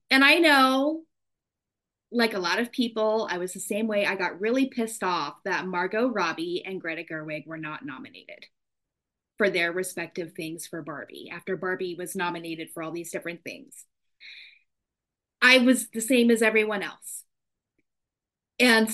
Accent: American